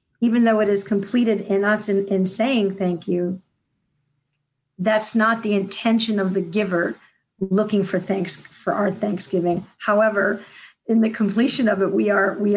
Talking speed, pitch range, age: 160 wpm, 185-210 Hz, 50-69